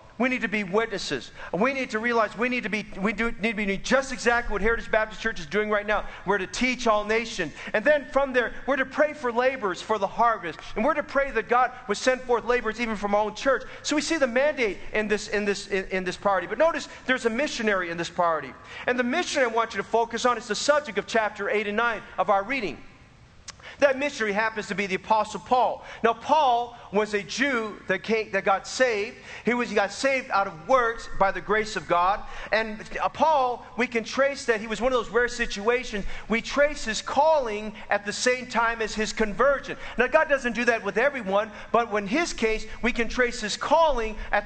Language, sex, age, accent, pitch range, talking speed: English, male, 40-59, American, 210-255 Hz, 230 wpm